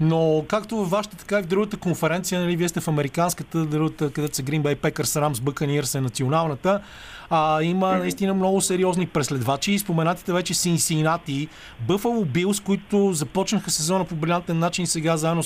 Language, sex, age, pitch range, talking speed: Bulgarian, male, 30-49, 150-180 Hz, 170 wpm